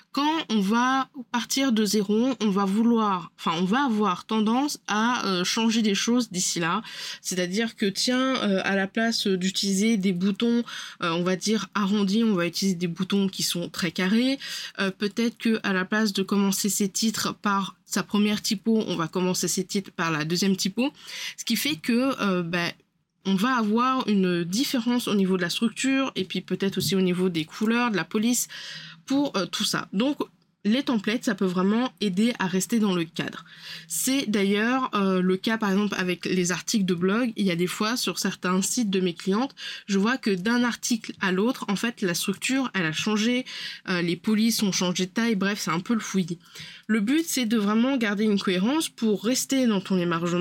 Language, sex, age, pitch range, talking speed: French, female, 20-39, 190-235 Hz, 205 wpm